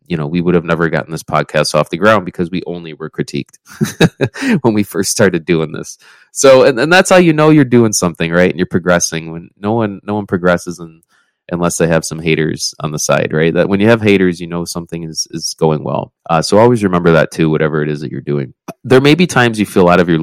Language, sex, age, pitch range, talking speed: English, male, 20-39, 85-110 Hz, 255 wpm